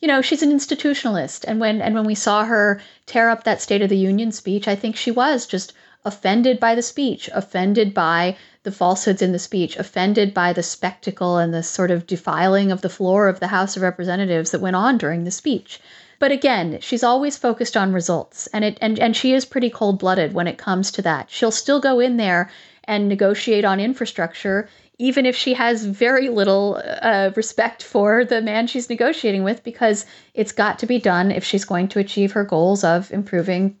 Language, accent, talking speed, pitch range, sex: English, American, 210 wpm, 185-230 Hz, female